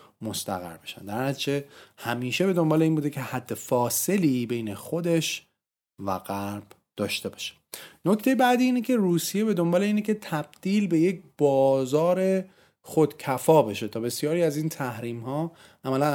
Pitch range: 115-160 Hz